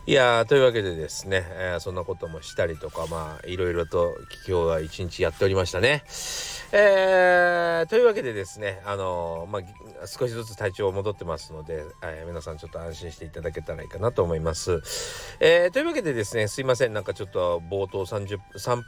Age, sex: 40-59, male